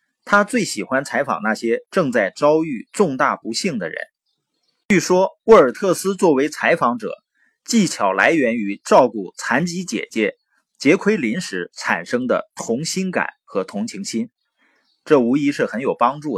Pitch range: 155-250 Hz